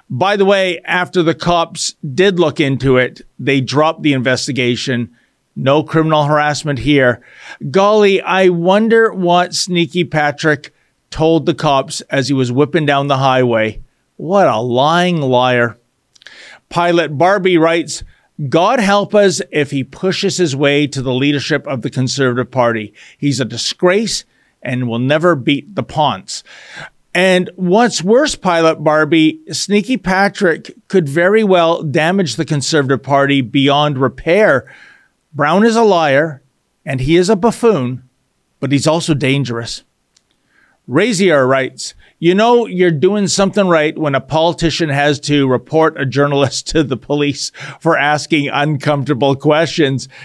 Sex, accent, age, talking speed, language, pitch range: male, American, 50-69, 140 wpm, English, 135-180 Hz